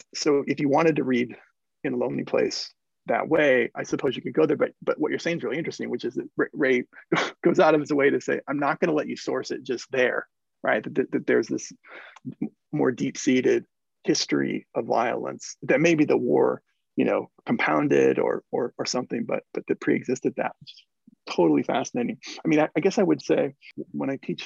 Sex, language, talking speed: male, English, 220 wpm